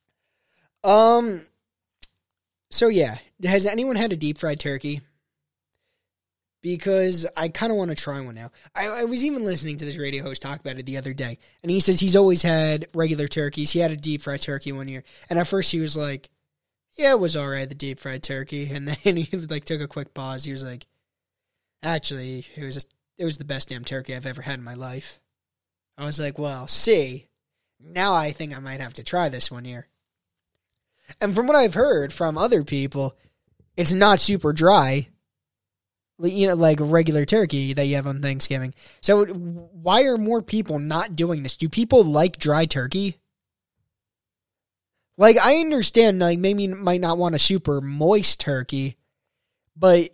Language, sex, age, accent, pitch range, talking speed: English, male, 20-39, American, 130-180 Hz, 185 wpm